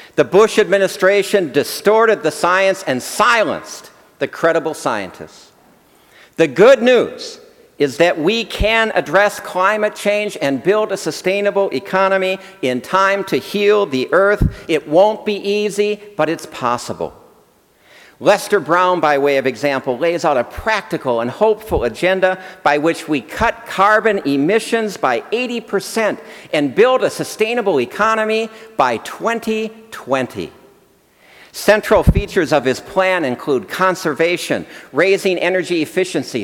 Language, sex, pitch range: English, male, 165-210 Hz